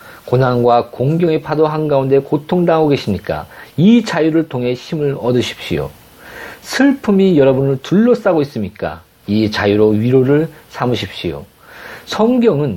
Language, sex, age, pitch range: Korean, male, 40-59, 110-160 Hz